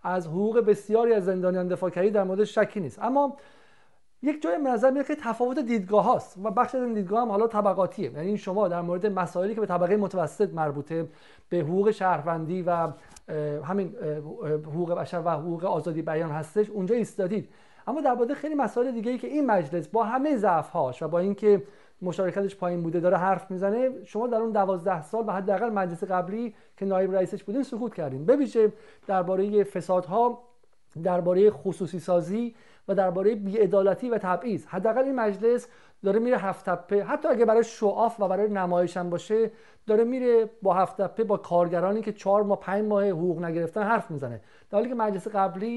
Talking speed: 175 wpm